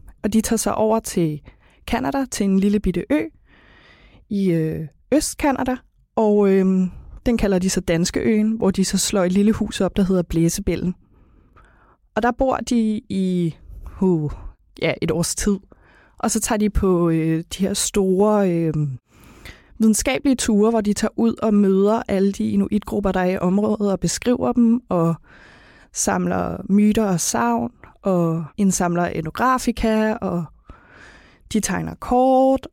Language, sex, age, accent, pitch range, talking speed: Danish, female, 20-39, native, 180-225 Hz, 150 wpm